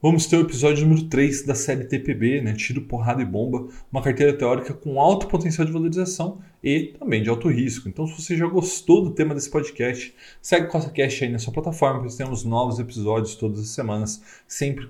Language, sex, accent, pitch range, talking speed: Portuguese, male, Brazilian, 115-155 Hz, 210 wpm